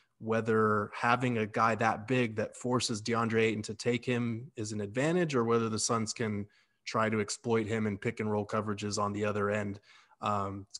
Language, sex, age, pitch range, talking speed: English, male, 20-39, 105-120 Hz, 200 wpm